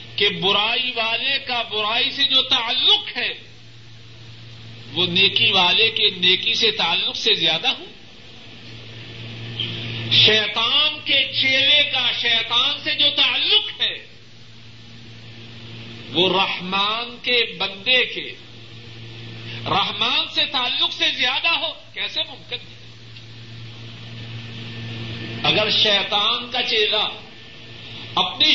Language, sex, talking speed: Urdu, male, 95 wpm